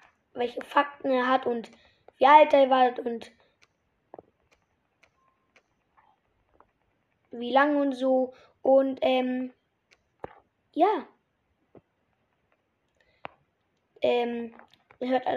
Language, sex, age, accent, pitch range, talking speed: German, female, 20-39, German, 255-300 Hz, 80 wpm